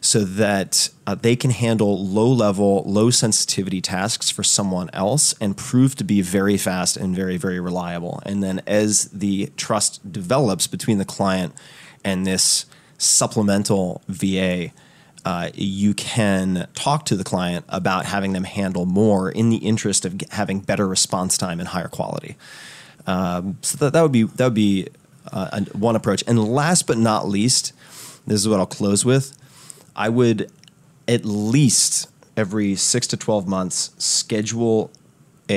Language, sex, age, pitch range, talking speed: English, male, 30-49, 100-130 Hz, 155 wpm